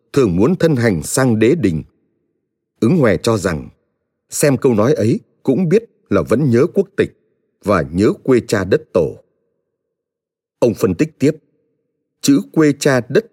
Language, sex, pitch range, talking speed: Vietnamese, male, 110-170 Hz, 160 wpm